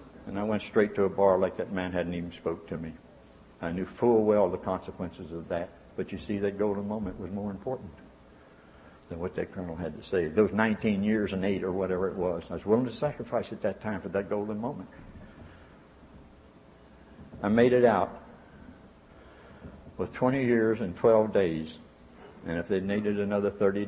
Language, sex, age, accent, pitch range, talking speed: English, male, 60-79, American, 100-155 Hz, 190 wpm